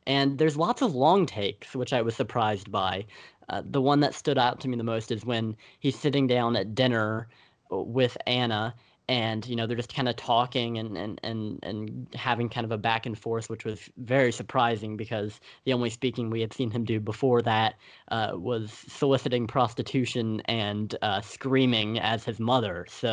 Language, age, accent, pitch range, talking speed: English, 10-29, American, 115-135 Hz, 195 wpm